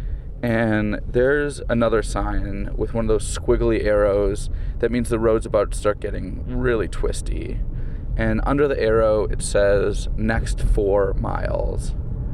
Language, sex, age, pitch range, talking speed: English, male, 20-39, 105-125 Hz, 140 wpm